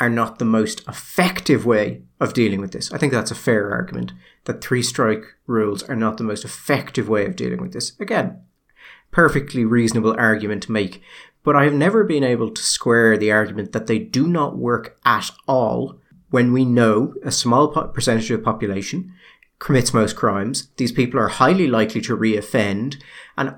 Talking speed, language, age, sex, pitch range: 180 wpm, English, 30-49, male, 110-140 Hz